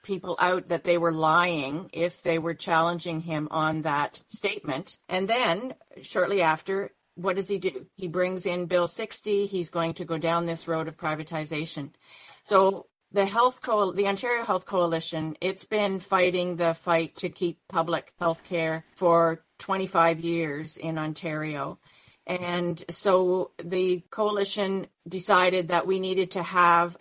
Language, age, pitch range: English, 50-69, 160-190 Hz